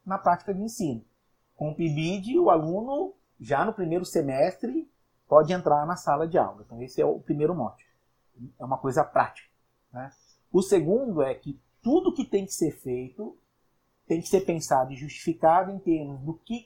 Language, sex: Portuguese, male